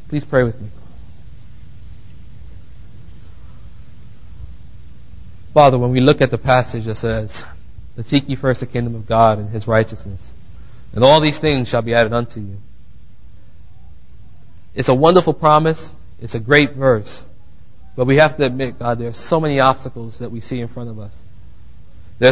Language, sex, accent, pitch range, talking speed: English, male, American, 110-145 Hz, 160 wpm